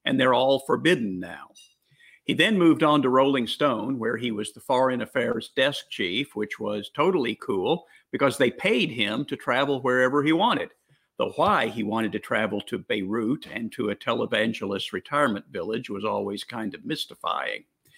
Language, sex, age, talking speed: English, male, 50-69, 175 wpm